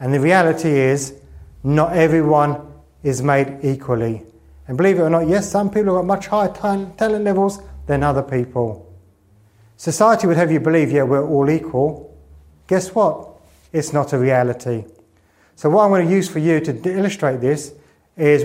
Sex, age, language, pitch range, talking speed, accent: male, 30-49, English, 130-160 Hz, 170 wpm, British